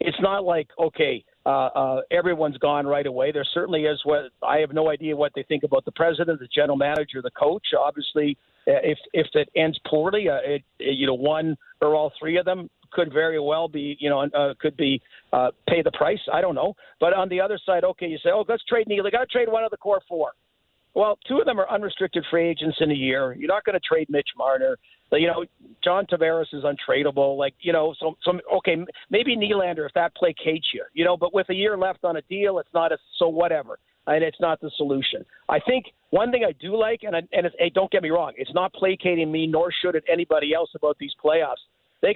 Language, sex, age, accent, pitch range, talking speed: English, male, 50-69, American, 150-185 Hz, 240 wpm